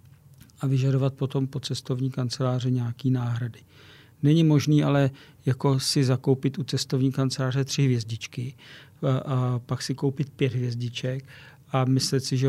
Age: 50-69